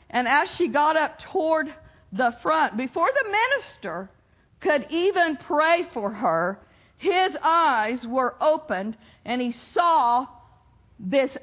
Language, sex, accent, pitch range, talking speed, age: English, female, American, 240-320 Hz, 125 wpm, 50-69